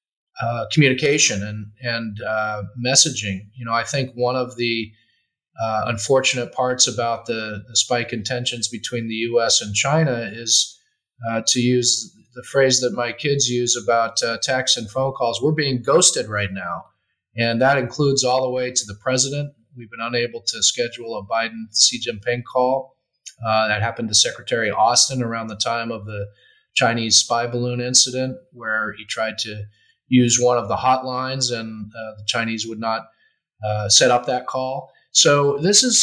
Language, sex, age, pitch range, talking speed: English, male, 30-49, 115-135 Hz, 175 wpm